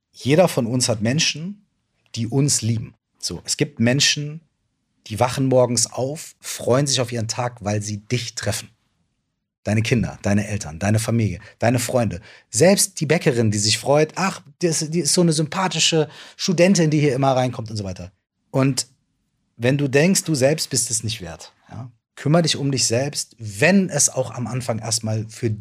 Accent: German